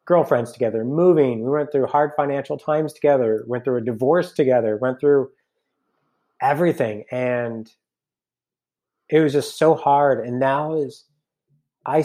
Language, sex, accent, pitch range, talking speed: English, male, American, 125-150 Hz, 140 wpm